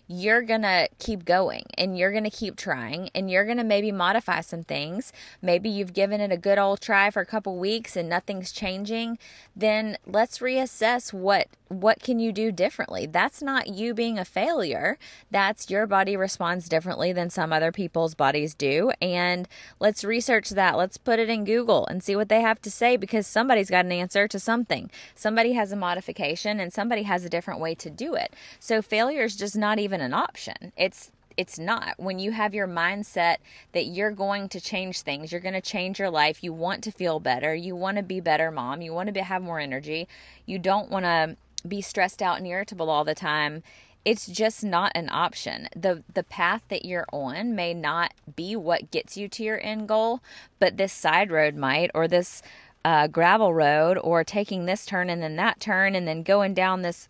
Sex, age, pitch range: female, 20-39, 175-215 Hz